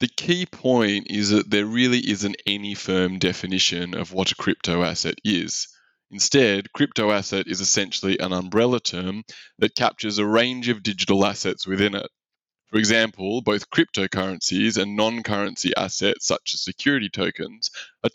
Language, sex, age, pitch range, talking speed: English, male, 20-39, 95-120 Hz, 150 wpm